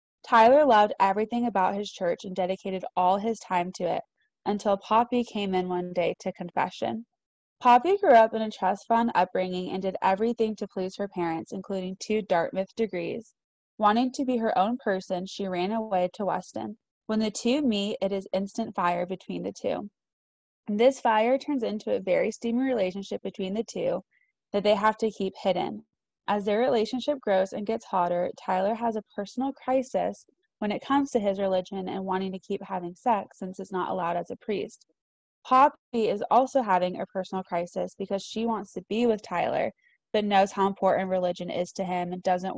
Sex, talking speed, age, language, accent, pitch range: female, 190 wpm, 20-39, English, American, 185-230 Hz